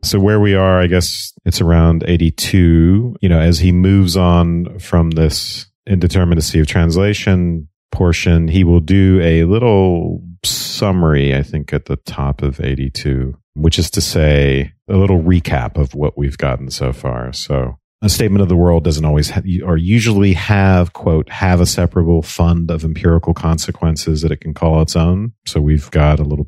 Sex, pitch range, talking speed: male, 75-95 Hz, 175 wpm